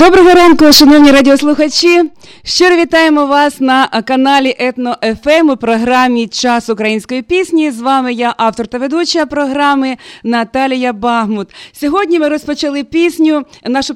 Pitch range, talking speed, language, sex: 245-305 Hz, 125 wpm, Russian, female